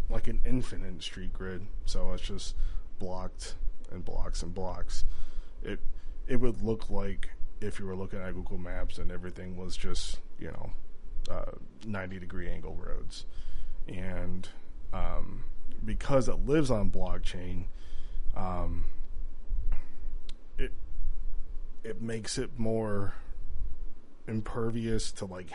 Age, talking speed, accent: 20-39, 120 wpm, American